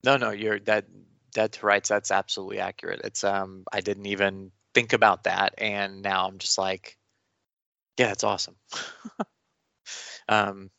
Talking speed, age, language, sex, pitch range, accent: 150 wpm, 20-39, English, male, 100-110 Hz, American